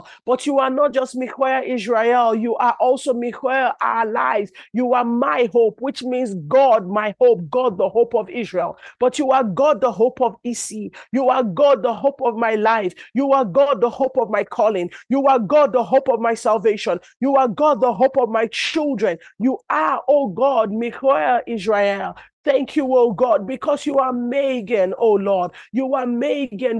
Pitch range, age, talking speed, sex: 225-270 Hz, 40-59, 195 wpm, male